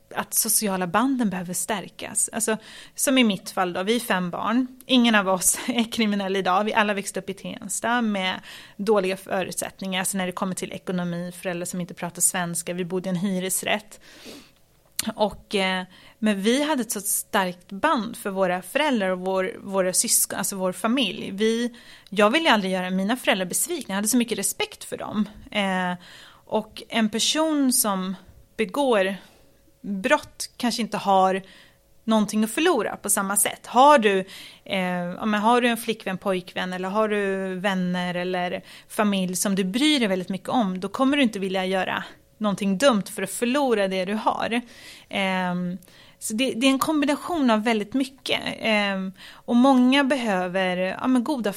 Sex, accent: female, native